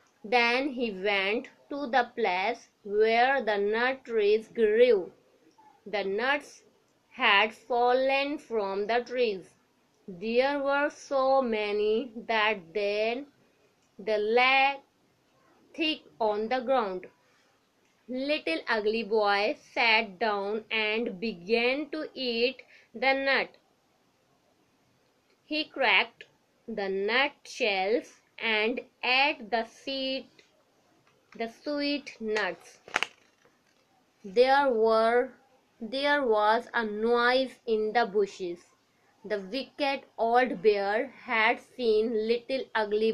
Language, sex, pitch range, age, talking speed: Urdu, female, 215-265 Hz, 20-39, 95 wpm